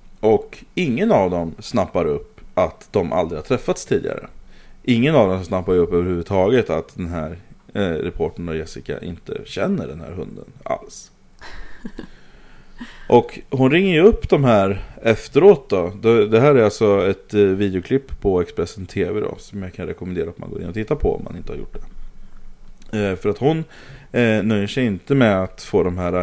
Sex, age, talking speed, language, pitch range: male, 30-49, 185 wpm, English, 85-105 Hz